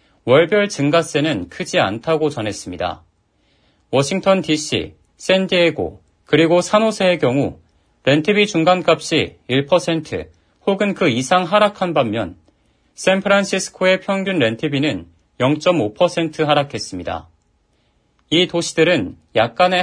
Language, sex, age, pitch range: Korean, male, 40-59, 115-180 Hz